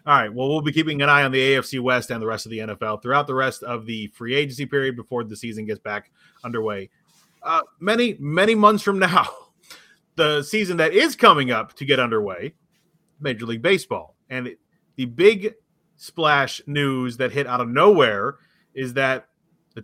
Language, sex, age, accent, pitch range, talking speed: English, male, 30-49, American, 140-190 Hz, 190 wpm